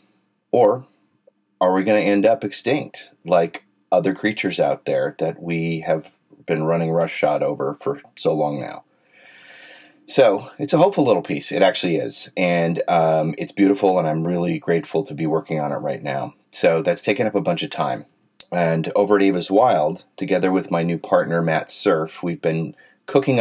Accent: American